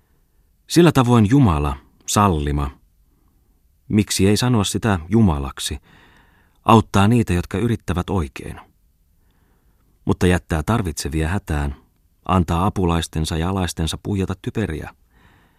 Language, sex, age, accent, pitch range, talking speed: Finnish, male, 30-49, native, 80-100 Hz, 90 wpm